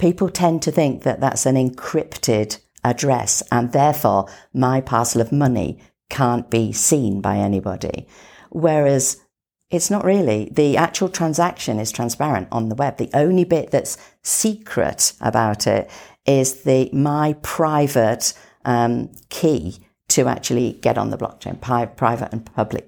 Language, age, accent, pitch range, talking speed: English, 50-69, British, 120-160 Hz, 140 wpm